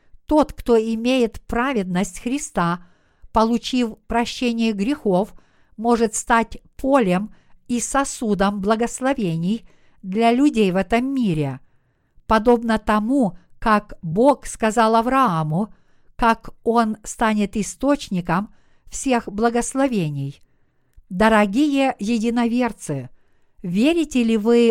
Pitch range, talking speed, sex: 195-245 Hz, 85 wpm, female